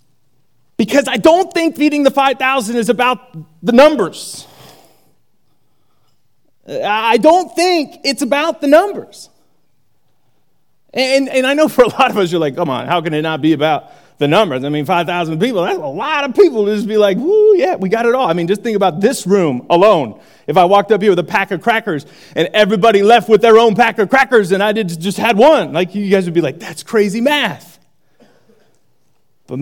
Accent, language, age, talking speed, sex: American, English, 30-49, 205 wpm, male